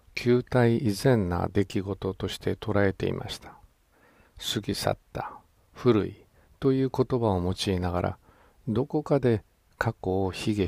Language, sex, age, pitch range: Japanese, male, 50-69, 95-120 Hz